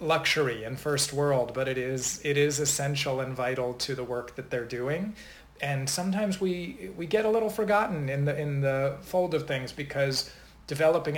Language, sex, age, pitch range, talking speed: English, male, 40-59, 140-160 Hz, 190 wpm